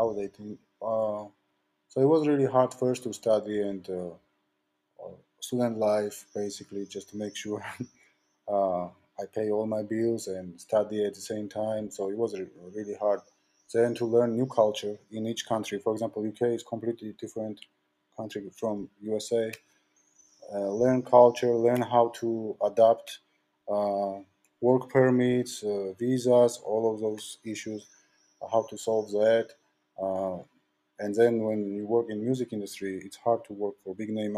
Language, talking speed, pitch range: English, 155 wpm, 100-120 Hz